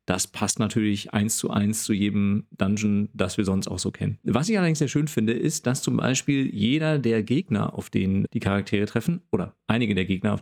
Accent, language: German, German